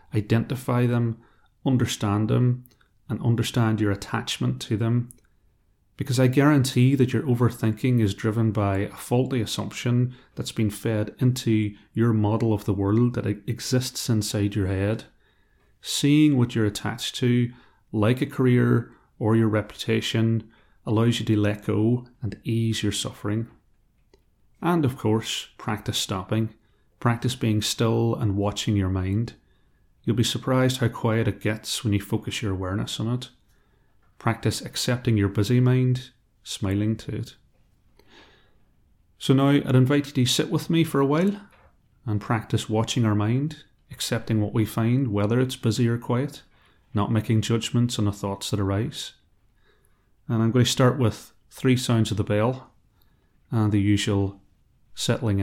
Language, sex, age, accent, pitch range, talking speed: English, male, 30-49, British, 105-125 Hz, 150 wpm